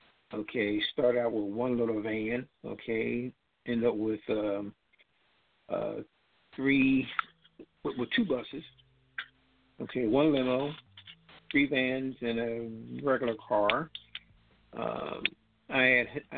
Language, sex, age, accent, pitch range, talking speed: English, male, 50-69, American, 110-125 Hz, 110 wpm